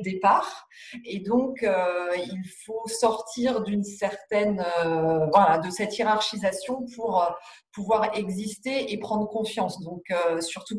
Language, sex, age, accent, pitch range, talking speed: French, female, 40-59, French, 185-225 Hz, 135 wpm